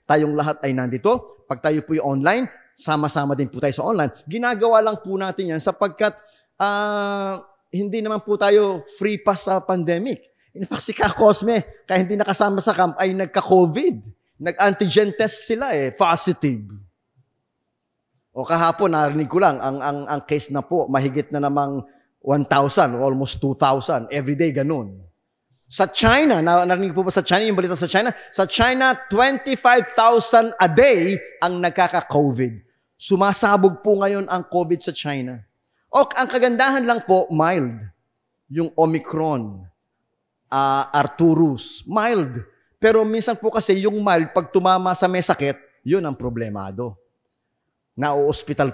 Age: 20-39